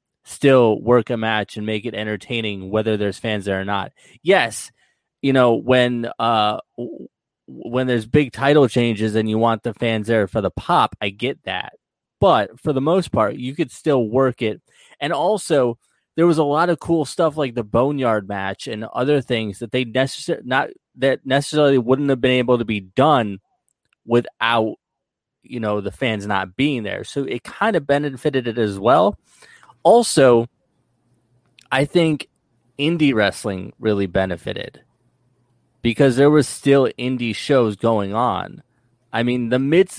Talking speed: 165 wpm